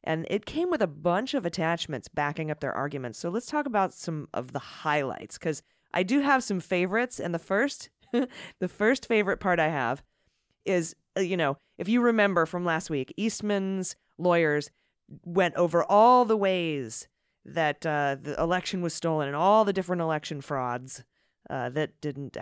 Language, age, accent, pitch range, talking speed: English, 30-49, American, 150-200 Hz, 175 wpm